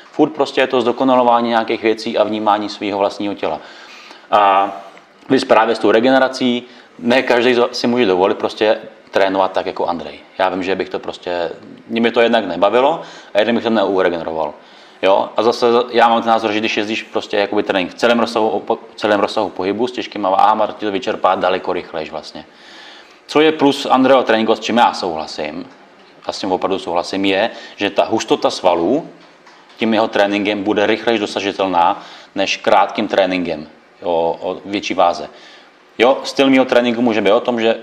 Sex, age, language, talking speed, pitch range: male, 30-49, Czech, 175 wpm, 100-120 Hz